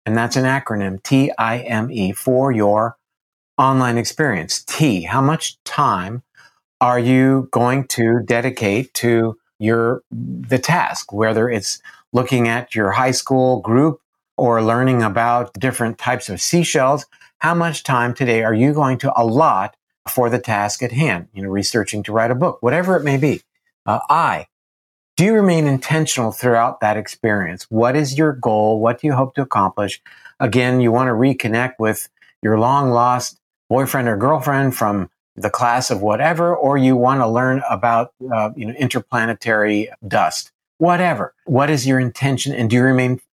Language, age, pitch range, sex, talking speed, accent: English, 50-69, 110-135 Hz, male, 160 wpm, American